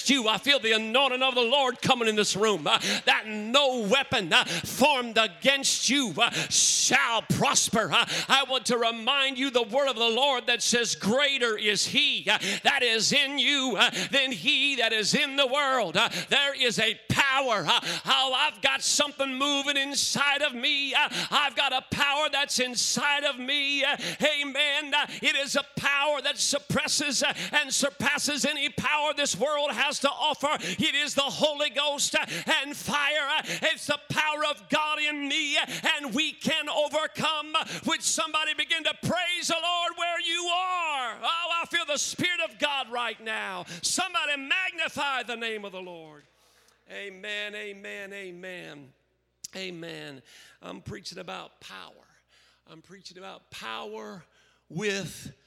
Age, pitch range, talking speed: 50-69, 220-290 Hz, 165 wpm